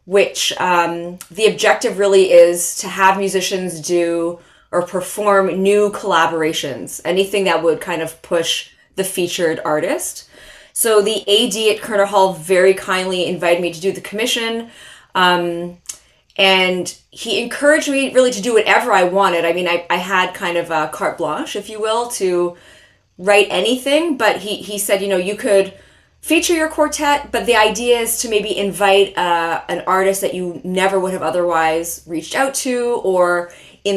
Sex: female